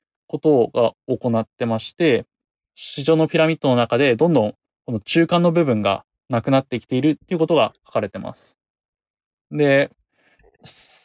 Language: Japanese